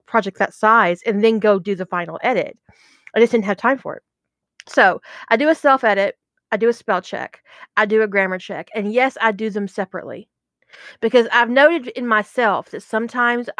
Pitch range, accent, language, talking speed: 200-240 Hz, American, English, 205 wpm